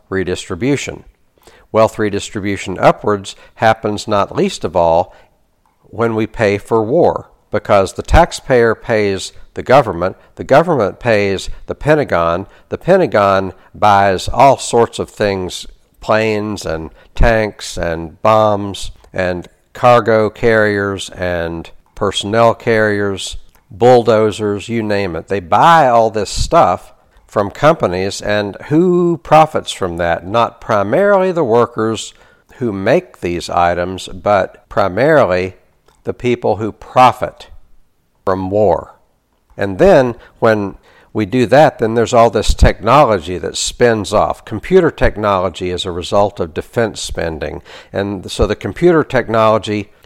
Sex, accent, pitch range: male, American, 95-115 Hz